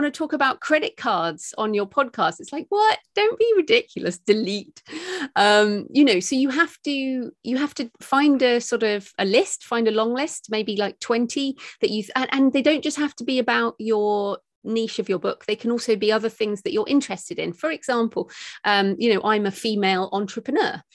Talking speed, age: 205 wpm, 30-49